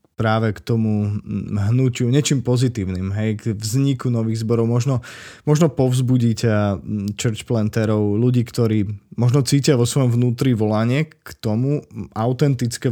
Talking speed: 125 wpm